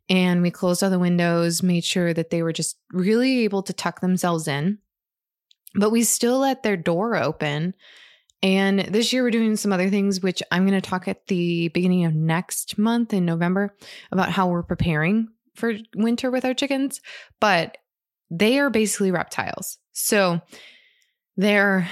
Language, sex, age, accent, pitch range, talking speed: English, female, 20-39, American, 175-215 Hz, 170 wpm